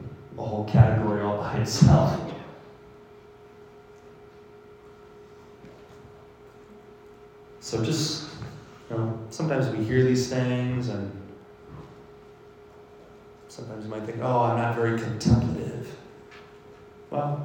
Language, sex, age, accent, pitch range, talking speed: English, male, 30-49, American, 105-130 Hz, 95 wpm